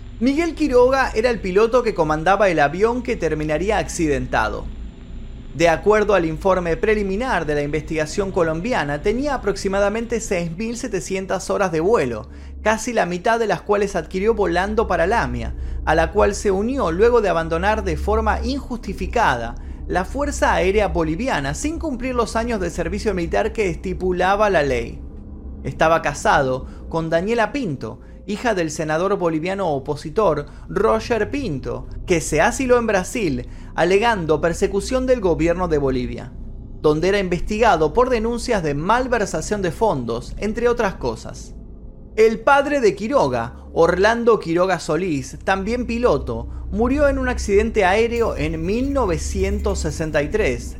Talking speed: 135 wpm